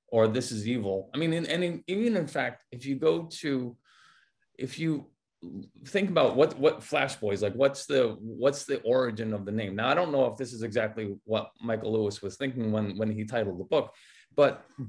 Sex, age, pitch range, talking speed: male, 30-49, 110-135 Hz, 210 wpm